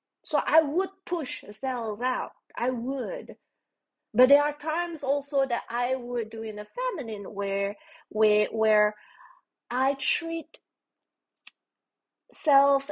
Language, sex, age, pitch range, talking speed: English, female, 20-39, 215-290 Hz, 120 wpm